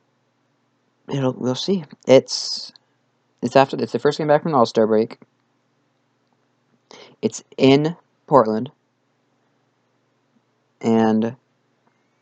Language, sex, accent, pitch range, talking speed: English, male, American, 110-135 Hz, 95 wpm